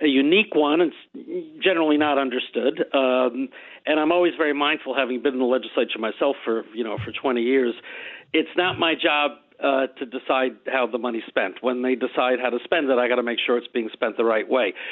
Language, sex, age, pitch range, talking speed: English, male, 50-69, 125-155 Hz, 215 wpm